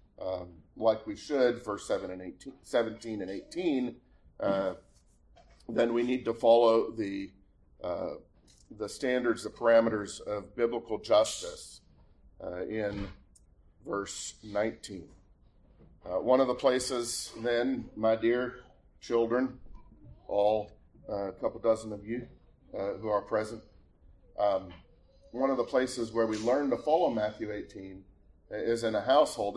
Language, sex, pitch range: English, male, 100-120 Hz